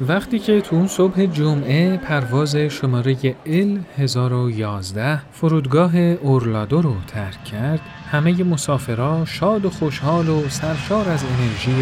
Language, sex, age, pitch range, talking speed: Persian, male, 40-59, 130-175 Hz, 115 wpm